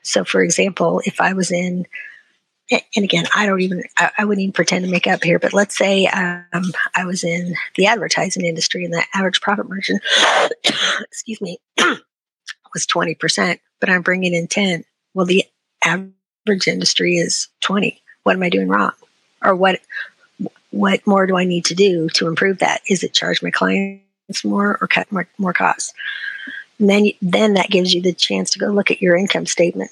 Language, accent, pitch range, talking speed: English, American, 170-200 Hz, 190 wpm